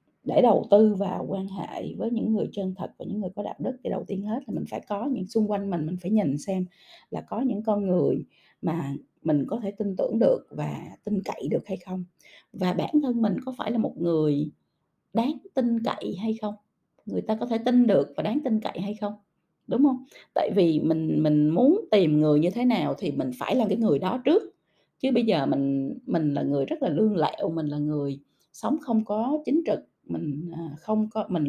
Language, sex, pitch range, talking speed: Vietnamese, female, 175-245 Hz, 230 wpm